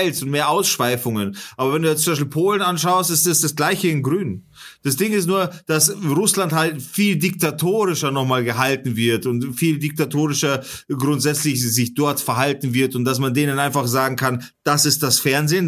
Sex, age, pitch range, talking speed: male, 30-49, 135-185 Hz, 185 wpm